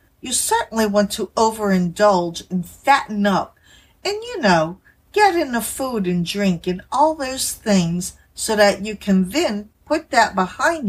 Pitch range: 180-240 Hz